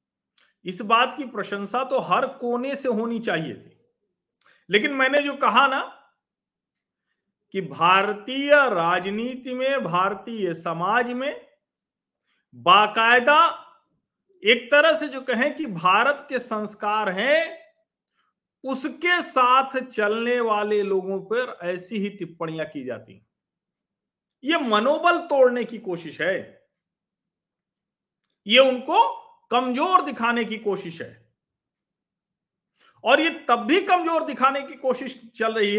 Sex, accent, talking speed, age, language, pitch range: male, native, 115 wpm, 50-69, Hindi, 190-270 Hz